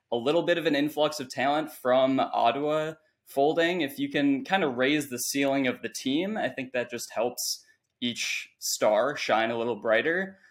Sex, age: male, 10-29